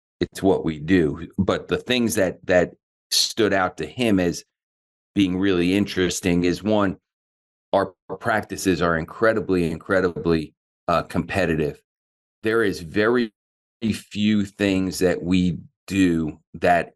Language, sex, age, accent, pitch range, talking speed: English, male, 40-59, American, 90-105 Hz, 125 wpm